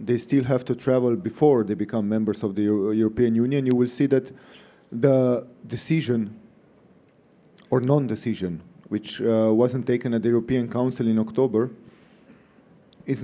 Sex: male